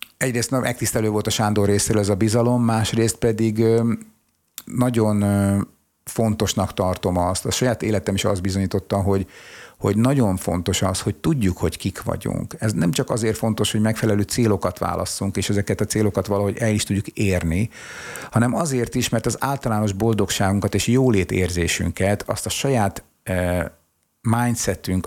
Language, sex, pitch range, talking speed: Hungarian, male, 95-115 Hz, 150 wpm